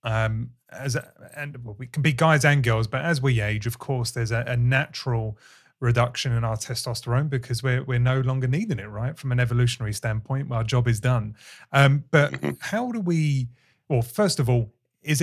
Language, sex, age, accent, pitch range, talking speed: English, male, 30-49, British, 120-140 Hz, 195 wpm